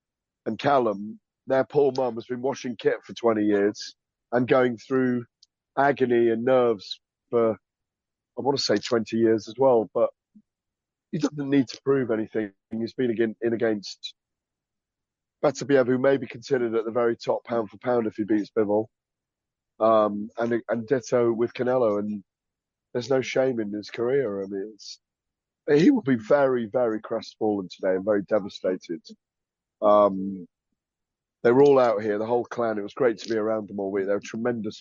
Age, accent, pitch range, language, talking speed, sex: 30-49, British, 105-125 Hz, English, 180 wpm, male